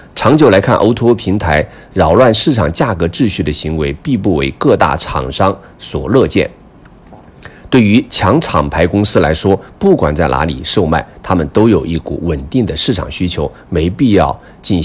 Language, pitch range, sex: Chinese, 80-100 Hz, male